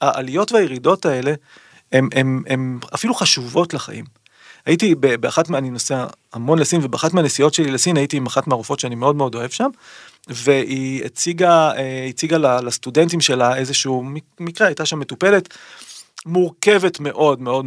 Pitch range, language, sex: 135-170 Hz, Hebrew, male